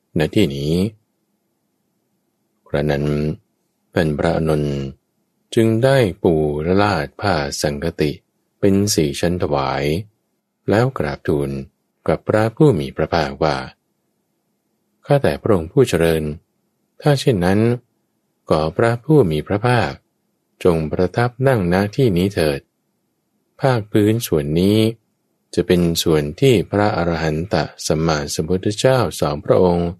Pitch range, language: 75-110 Hz, English